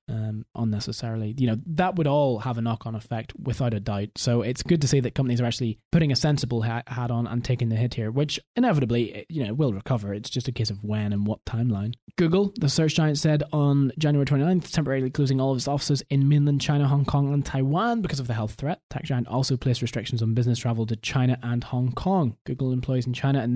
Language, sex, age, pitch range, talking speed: English, male, 20-39, 125-145 Hz, 235 wpm